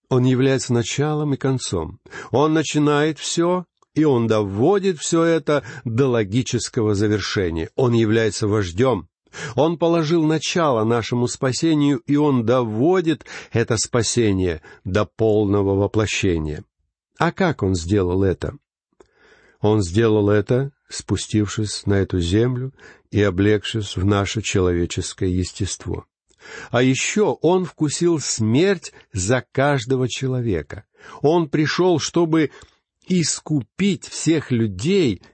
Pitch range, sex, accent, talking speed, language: 105-140 Hz, male, native, 110 wpm, Russian